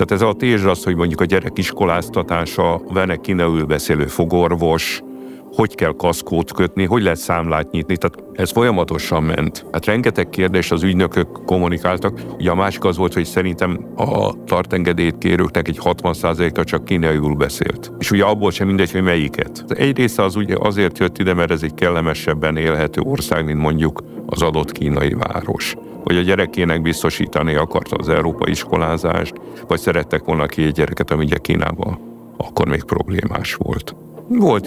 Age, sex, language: 60-79, male, Hungarian